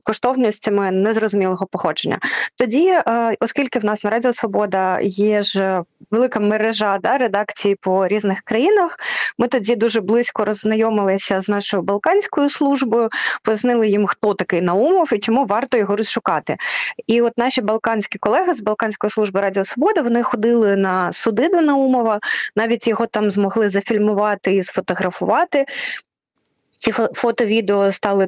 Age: 20-39